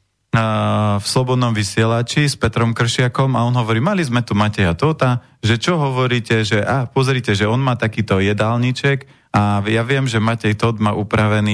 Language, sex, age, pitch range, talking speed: Slovak, male, 30-49, 105-130 Hz, 170 wpm